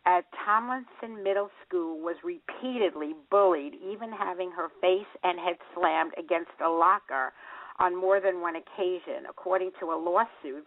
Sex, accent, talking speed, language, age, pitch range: female, American, 145 wpm, English, 50-69, 170-220 Hz